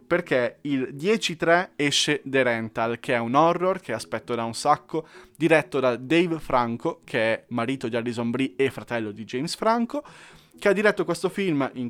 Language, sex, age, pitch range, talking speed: Italian, male, 20-39, 125-170 Hz, 180 wpm